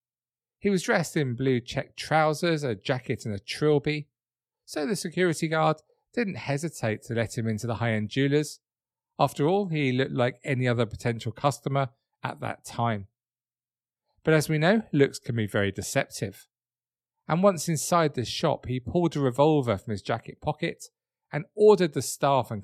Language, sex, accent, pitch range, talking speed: English, male, British, 120-155 Hz, 170 wpm